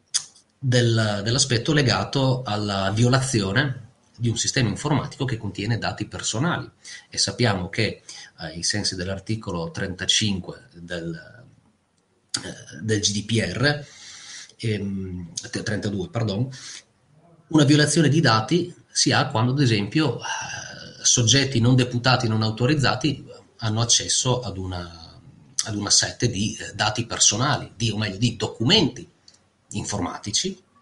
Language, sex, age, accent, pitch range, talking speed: Italian, male, 30-49, native, 100-130 Hz, 105 wpm